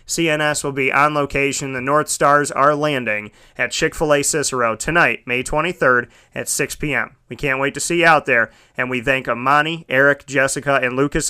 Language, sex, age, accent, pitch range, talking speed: English, male, 30-49, American, 120-140 Hz, 185 wpm